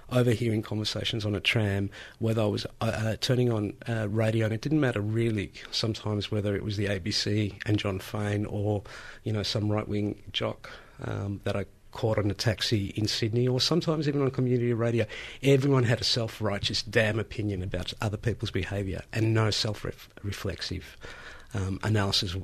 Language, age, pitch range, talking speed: English, 50-69, 100-120 Hz, 170 wpm